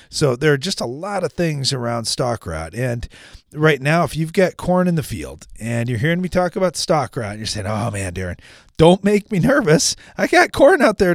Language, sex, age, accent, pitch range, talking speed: English, male, 30-49, American, 115-165 Hz, 235 wpm